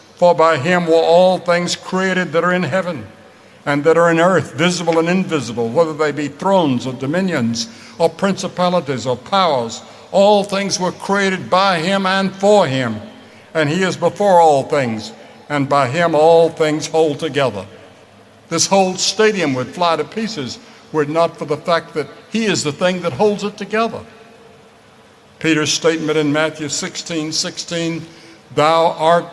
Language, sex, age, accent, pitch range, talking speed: English, male, 60-79, American, 155-190 Hz, 165 wpm